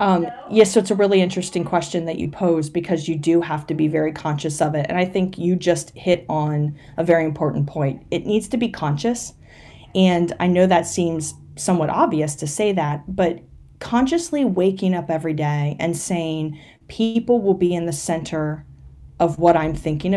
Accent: American